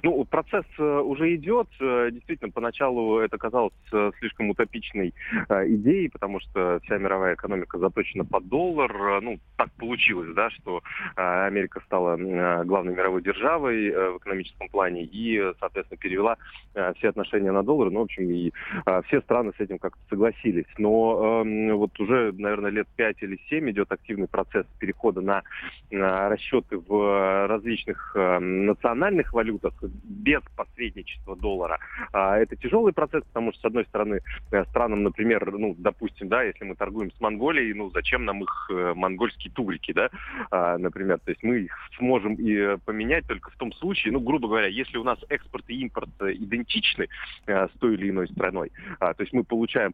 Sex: male